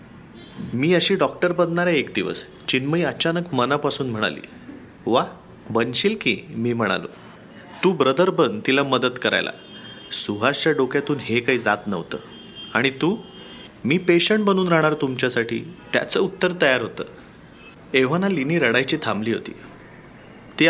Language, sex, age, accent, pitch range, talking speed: Marathi, male, 30-49, native, 120-180 Hz, 130 wpm